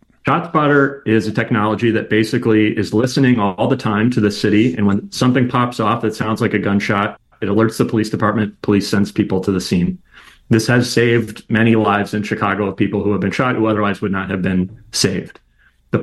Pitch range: 105-125 Hz